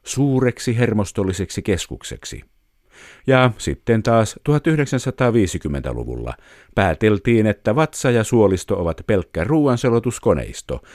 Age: 50-69